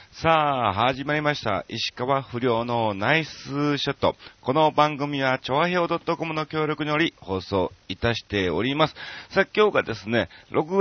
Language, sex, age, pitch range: Japanese, male, 40-59, 105-155 Hz